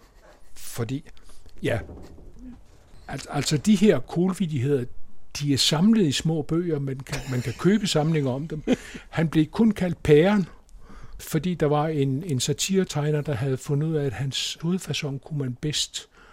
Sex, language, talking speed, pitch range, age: male, Danish, 160 wpm, 125-160 Hz, 60-79